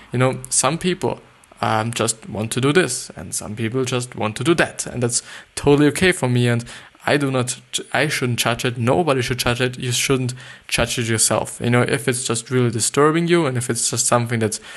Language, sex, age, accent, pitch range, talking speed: English, male, 20-39, German, 115-135 Hz, 225 wpm